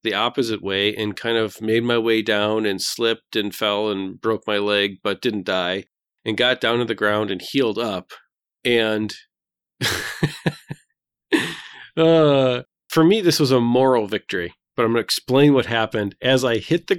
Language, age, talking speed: English, 40-59, 175 wpm